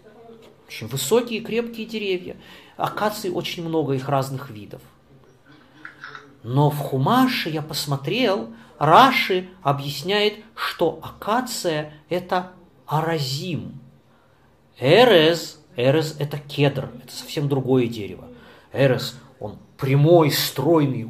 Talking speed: 90 wpm